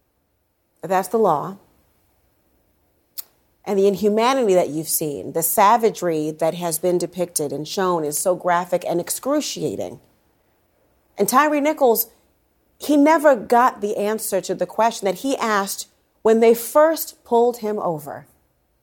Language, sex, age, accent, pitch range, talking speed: English, female, 40-59, American, 175-205 Hz, 135 wpm